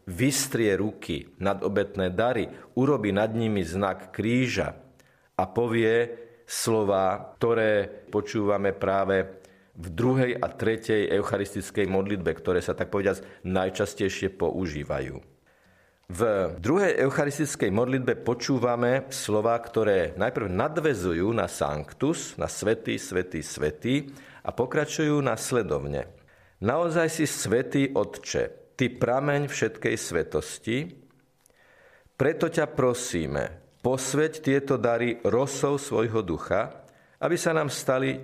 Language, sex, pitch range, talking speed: Slovak, male, 100-135 Hz, 105 wpm